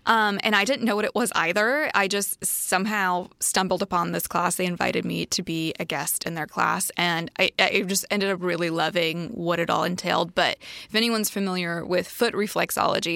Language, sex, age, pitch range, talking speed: English, female, 20-39, 175-200 Hz, 205 wpm